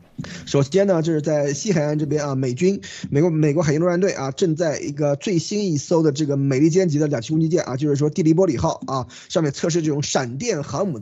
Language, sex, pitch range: Chinese, male, 145-185 Hz